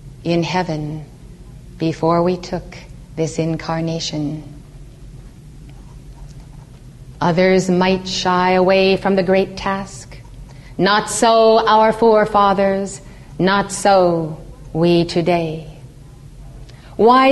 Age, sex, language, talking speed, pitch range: 40-59, female, English, 85 wpm, 145-210 Hz